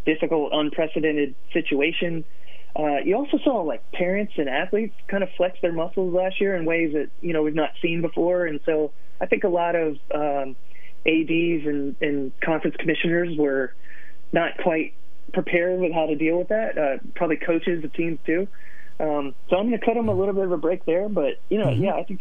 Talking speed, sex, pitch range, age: 205 wpm, male, 135-175 Hz, 20-39